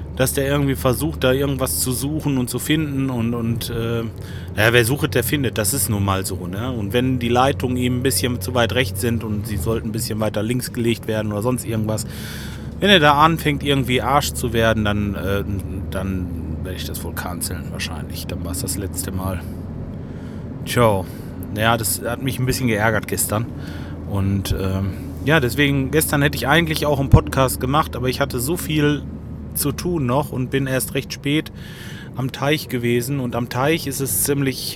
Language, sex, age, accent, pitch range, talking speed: German, male, 30-49, German, 100-130 Hz, 195 wpm